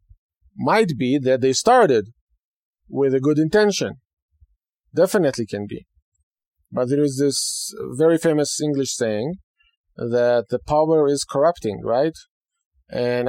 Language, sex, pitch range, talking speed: English, male, 110-150 Hz, 120 wpm